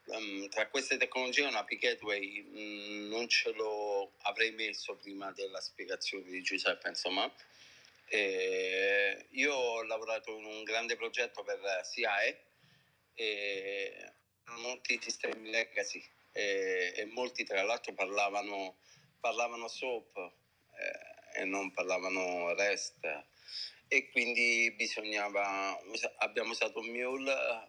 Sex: male